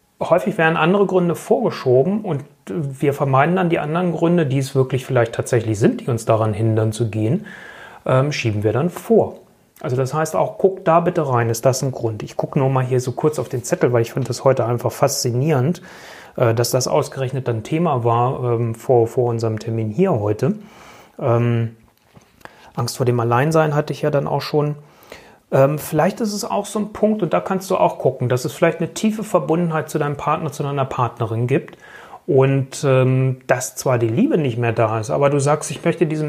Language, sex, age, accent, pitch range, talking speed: German, male, 30-49, German, 125-160 Hz, 205 wpm